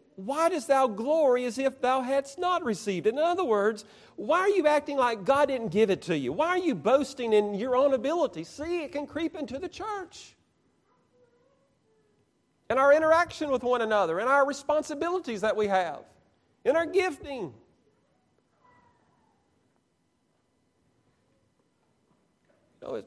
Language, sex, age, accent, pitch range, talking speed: English, male, 40-59, American, 190-295 Hz, 145 wpm